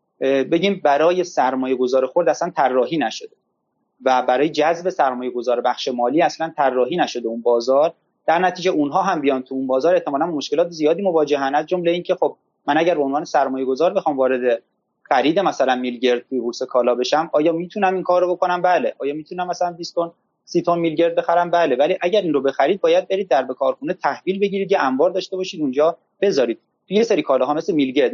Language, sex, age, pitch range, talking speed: Persian, male, 30-49, 130-180 Hz, 180 wpm